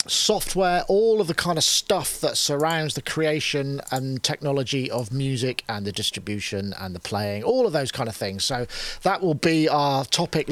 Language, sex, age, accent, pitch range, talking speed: English, male, 40-59, British, 135-170 Hz, 190 wpm